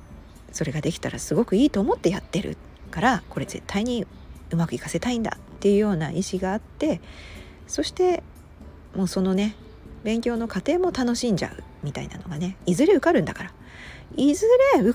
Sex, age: female, 40-59